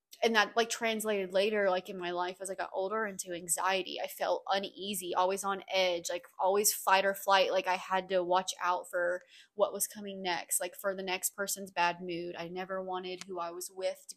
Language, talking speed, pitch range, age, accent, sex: English, 220 wpm, 185-230 Hz, 20-39, American, female